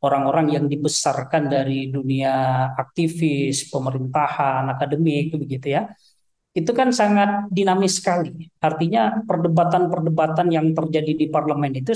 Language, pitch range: Indonesian, 145-185 Hz